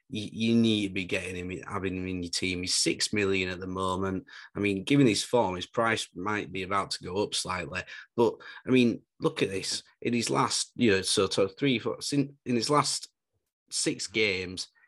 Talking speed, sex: 205 wpm, male